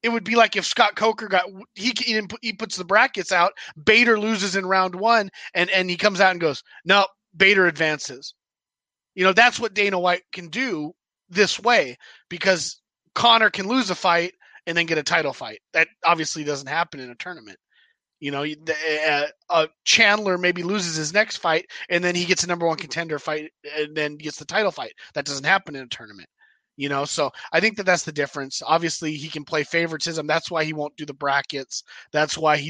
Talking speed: 210 wpm